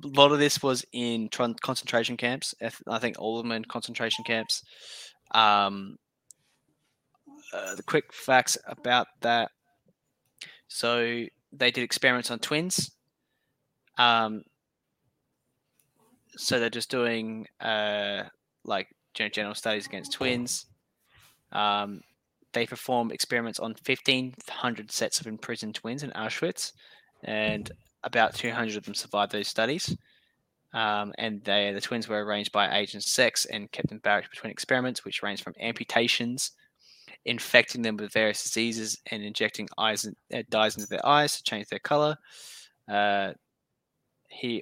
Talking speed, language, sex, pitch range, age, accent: 135 wpm, English, male, 110-125 Hz, 10-29, Australian